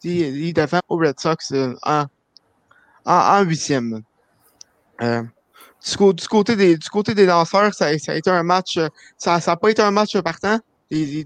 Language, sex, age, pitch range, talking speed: French, male, 20-39, 160-195 Hz, 175 wpm